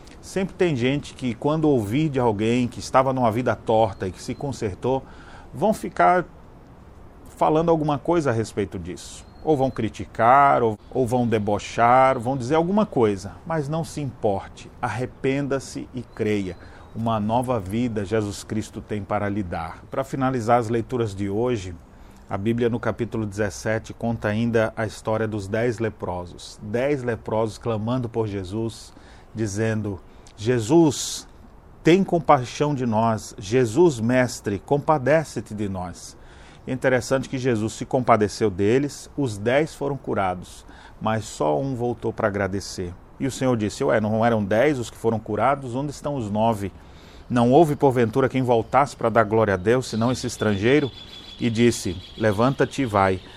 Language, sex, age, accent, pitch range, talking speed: Portuguese, male, 40-59, Brazilian, 100-130 Hz, 150 wpm